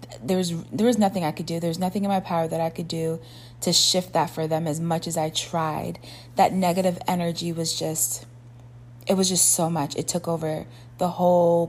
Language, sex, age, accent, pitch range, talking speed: English, female, 20-39, American, 140-185 Hz, 215 wpm